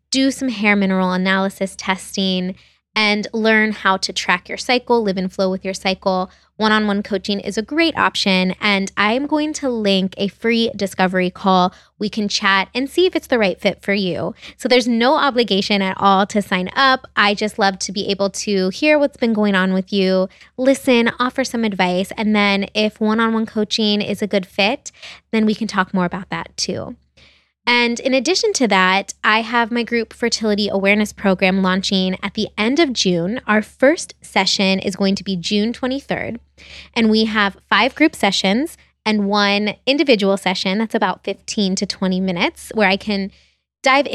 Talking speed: 185 wpm